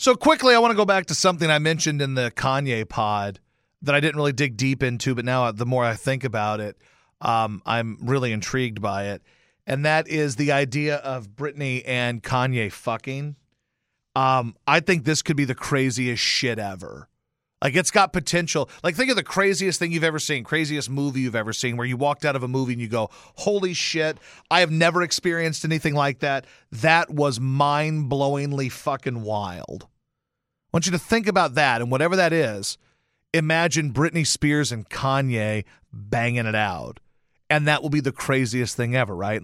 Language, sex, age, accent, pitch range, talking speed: English, male, 40-59, American, 125-185 Hz, 190 wpm